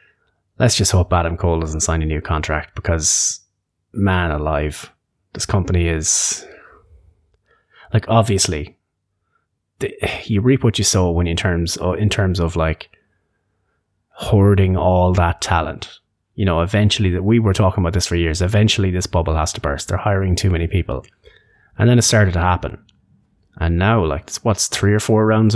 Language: English